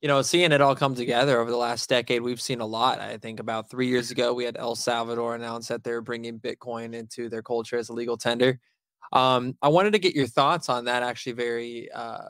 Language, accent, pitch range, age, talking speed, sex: English, American, 120-135 Hz, 20-39, 240 wpm, male